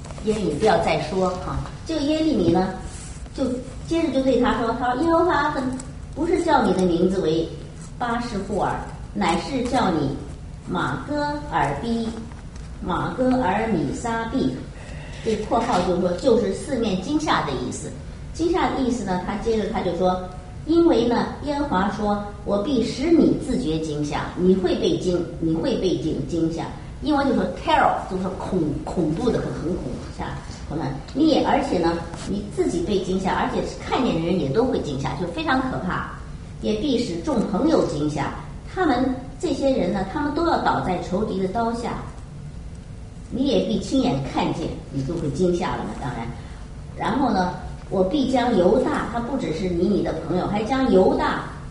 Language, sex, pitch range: English, male, 180-270 Hz